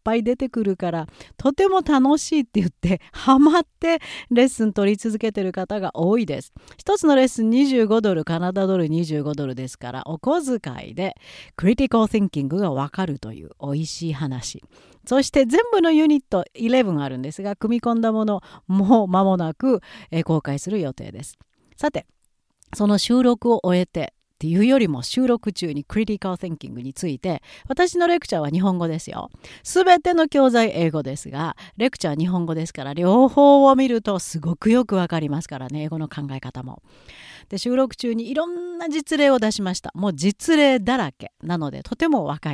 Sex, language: female, Japanese